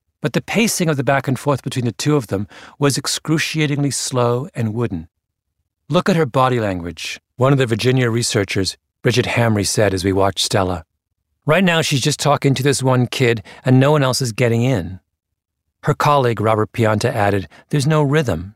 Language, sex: English, male